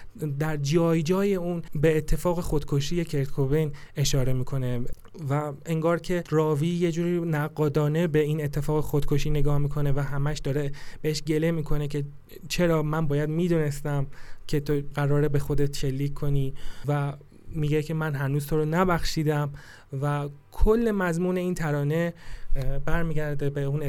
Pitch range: 145-170 Hz